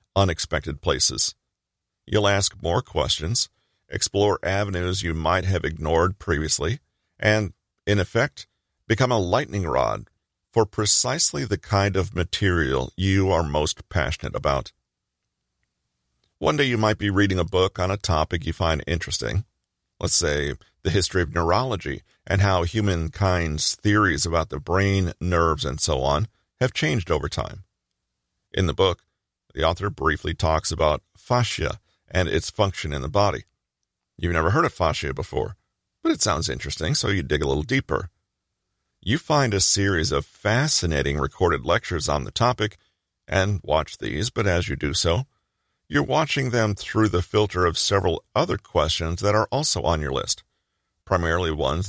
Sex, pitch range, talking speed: male, 80-105 Hz, 155 wpm